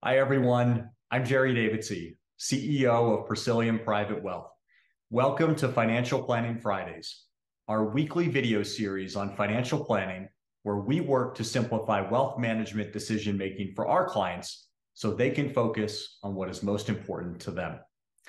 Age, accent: 30-49, American